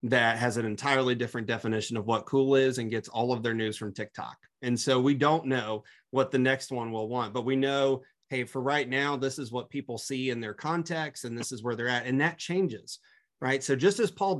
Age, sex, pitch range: 30-49, male, 125-165 Hz